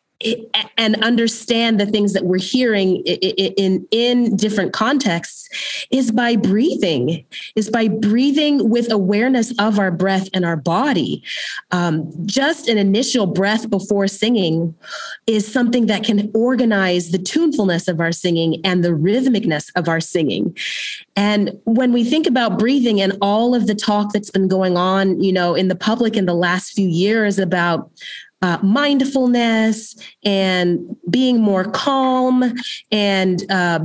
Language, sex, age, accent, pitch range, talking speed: English, female, 30-49, American, 185-235 Hz, 145 wpm